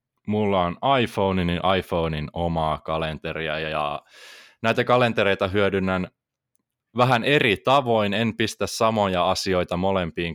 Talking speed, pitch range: 110 wpm, 90-115 Hz